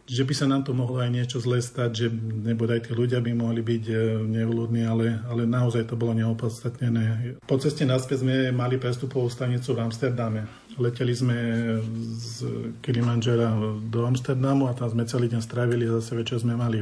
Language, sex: Slovak, male